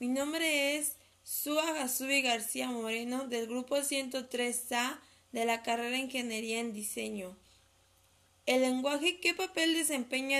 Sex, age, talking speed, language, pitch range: female, 20-39, 120 wpm, Spanish, 225-270 Hz